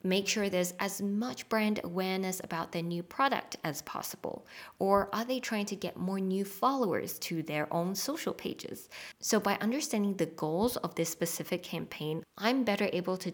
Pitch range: 165-210 Hz